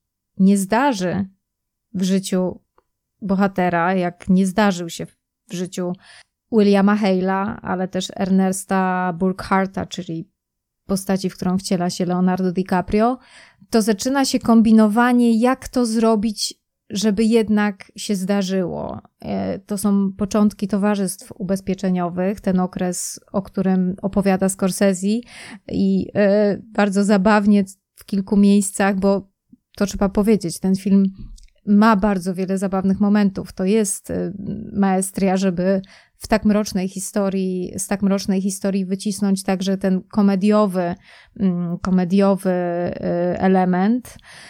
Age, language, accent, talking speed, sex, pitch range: 20-39, Polish, native, 110 wpm, female, 190-215 Hz